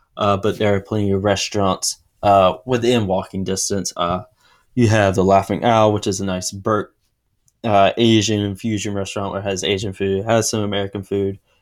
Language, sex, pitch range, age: English, male, 95-110 Hz, 10-29